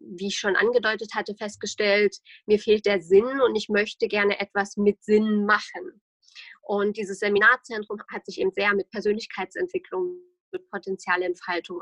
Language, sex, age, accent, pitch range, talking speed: German, female, 20-39, German, 200-230 Hz, 145 wpm